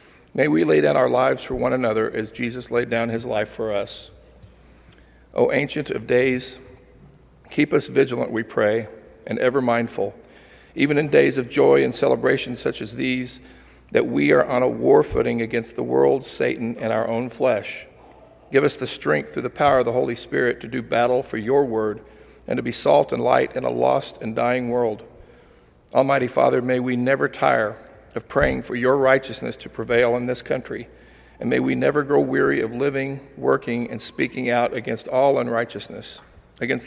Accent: American